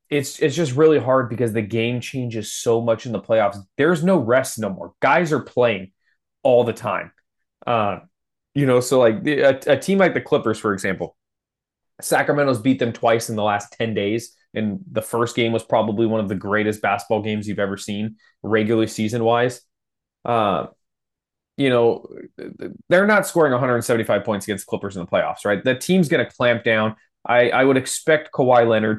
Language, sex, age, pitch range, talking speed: English, male, 20-39, 105-125 Hz, 190 wpm